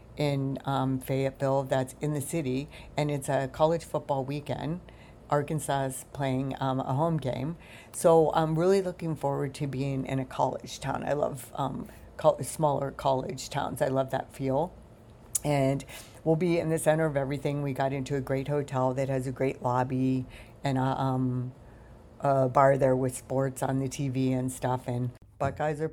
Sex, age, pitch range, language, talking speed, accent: female, 50-69, 135-160 Hz, English, 180 wpm, American